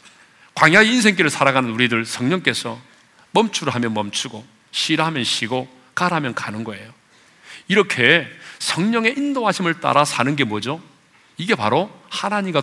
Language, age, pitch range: Korean, 40-59, 115-180 Hz